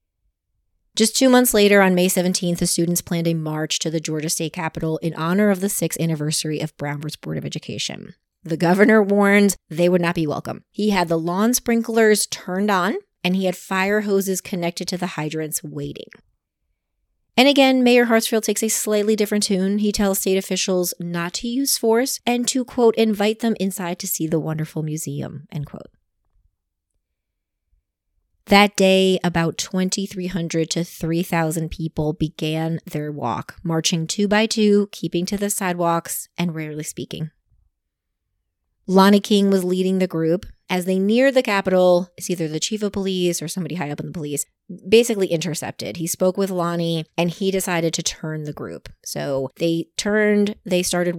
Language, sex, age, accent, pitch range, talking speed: English, female, 30-49, American, 155-200 Hz, 170 wpm